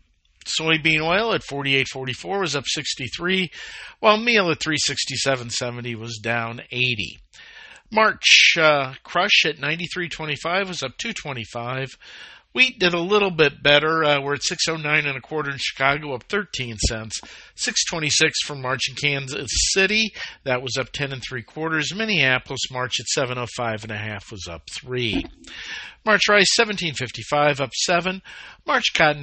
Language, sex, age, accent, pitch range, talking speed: English, male, 50-69, American, 125-170 Hz, 155 wpm